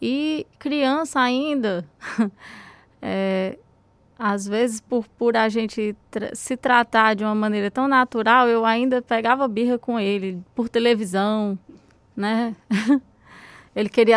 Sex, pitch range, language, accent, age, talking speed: female, 195-230 Hz, Portuguese, Brazilian, 20-39, 125 wpm